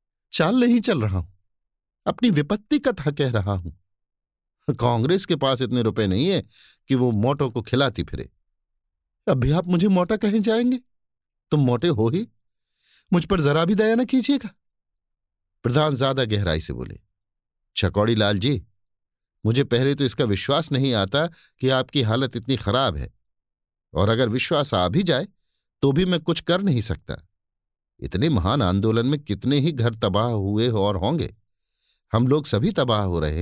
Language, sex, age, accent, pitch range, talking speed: Hindi, male, 50-69, native, 100-155 Hz, 165 wpm